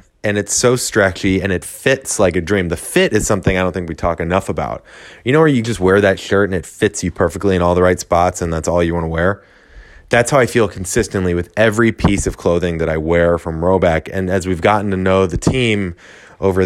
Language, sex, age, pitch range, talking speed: English, male, 20-39, 90-110 Hz, 250 wpm